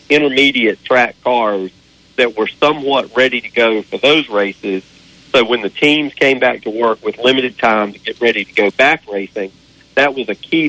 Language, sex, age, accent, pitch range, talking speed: English, male, 40-59, American, 110-140 Hz, 190 wpm